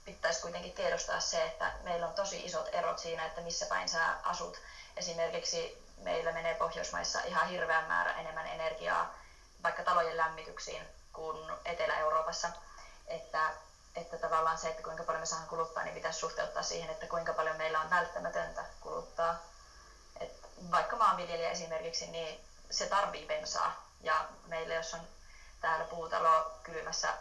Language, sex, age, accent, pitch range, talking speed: Finnish, female, 20-39, native, 160-170 Hz, 145 wpm